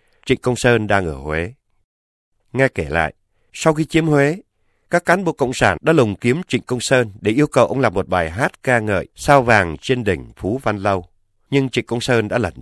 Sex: male